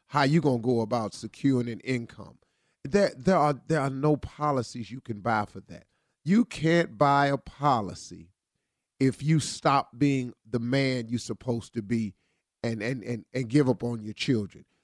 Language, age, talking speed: English, 40-59, 180 wpm